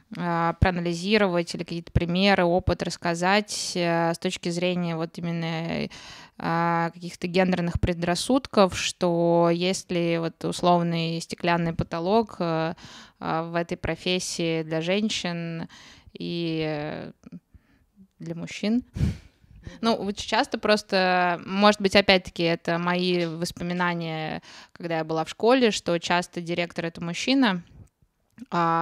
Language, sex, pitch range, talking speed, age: Russian, female, 165-190 Hz, 110 wpm, 20-39